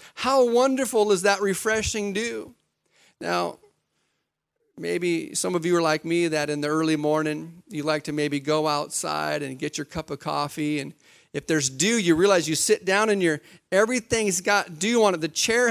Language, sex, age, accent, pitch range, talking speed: English, male, 40-59, American, 155-215 Hz, 185 wpm